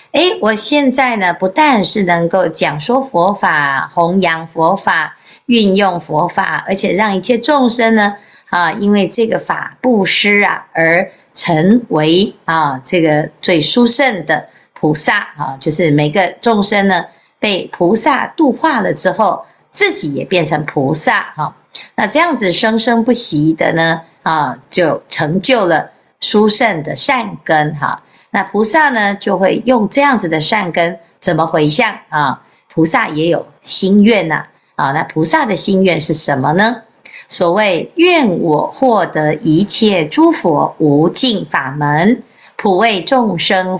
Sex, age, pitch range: female, 50-69, 165-230 Hz